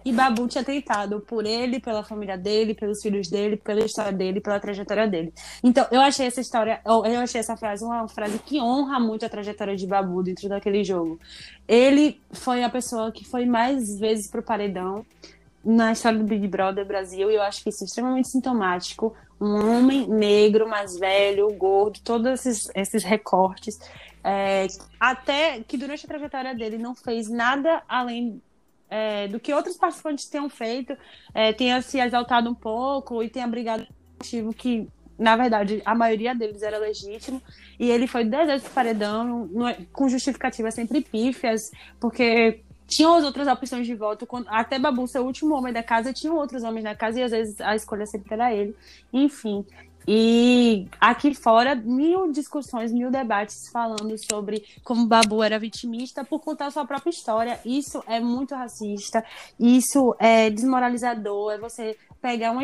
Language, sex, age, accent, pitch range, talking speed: Portuguese, female, 20-39, Brazilian, 215-255 Hz, 170 wpm